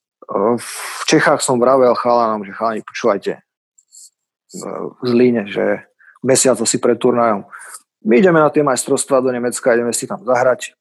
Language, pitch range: Slovak, 120-145 Hz